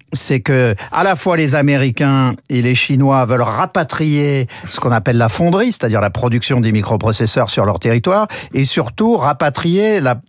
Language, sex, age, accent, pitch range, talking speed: French, male, 50-69, French, 120-155 Hz, 170 wpm